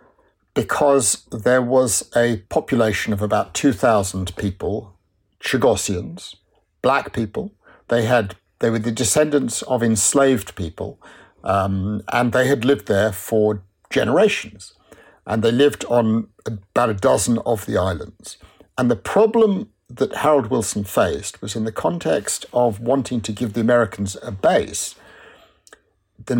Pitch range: 100-130 Hz